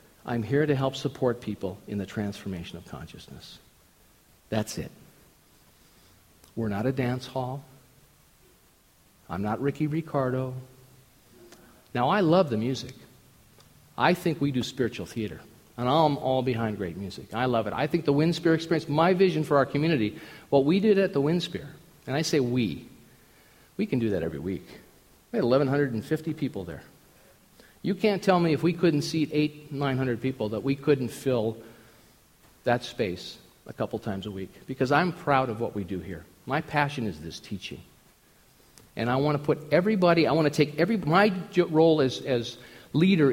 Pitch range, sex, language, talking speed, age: 115-155 Hz, male, English, 175 wpm, 50-69